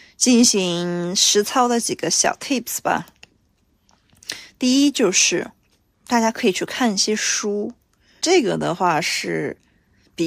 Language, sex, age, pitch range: Chinese, female, 20-39, 195-290 Hz